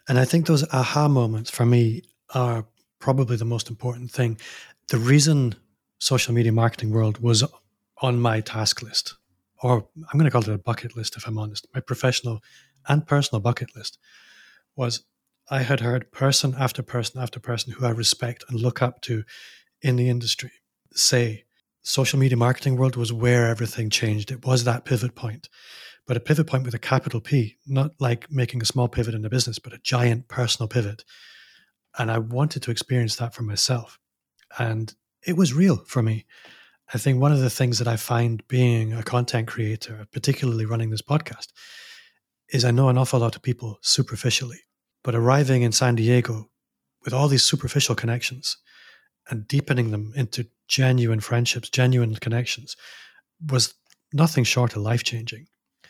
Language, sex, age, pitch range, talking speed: English, male, 30-49, 115-130 Hz, 175 wpm